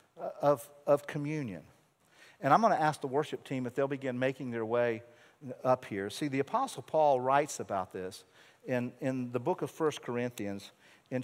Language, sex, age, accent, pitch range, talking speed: English, male, 50-69, American, 125-165 Hz, 180 wpm